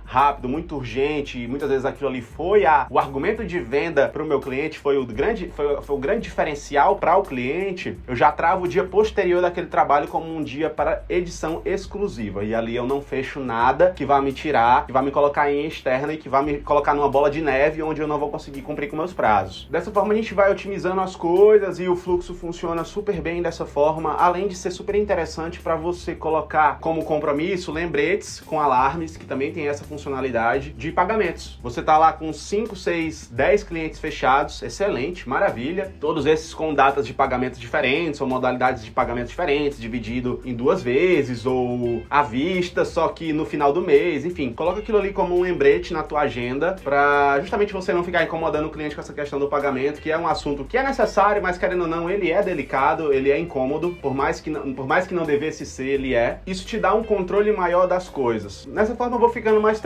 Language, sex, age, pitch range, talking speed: Portuguese, male, 20-39, 140-180 Hz, 220 wpm